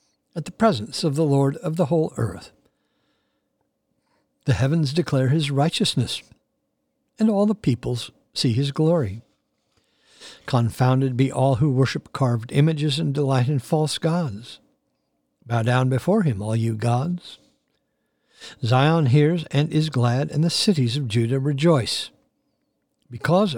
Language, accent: English, American